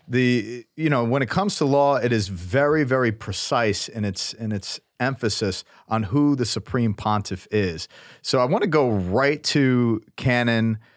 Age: 40-59